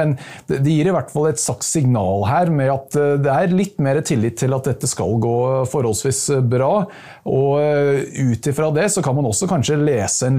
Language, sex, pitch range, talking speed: English, male, 120-150 Hz, 200 wpm